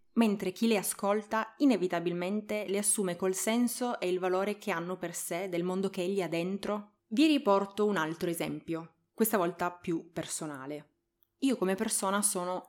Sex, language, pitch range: female, Italian, 170-210 Hz